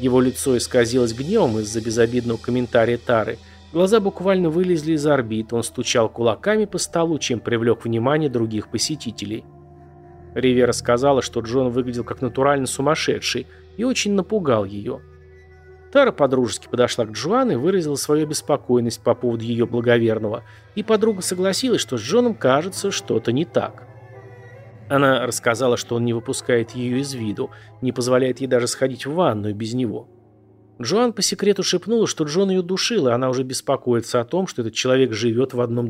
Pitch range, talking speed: 115-150 Hz, 160 wpm